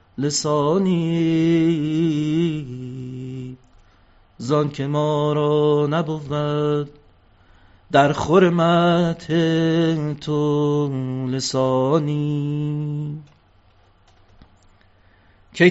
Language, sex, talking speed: Persian, male, 40 wpm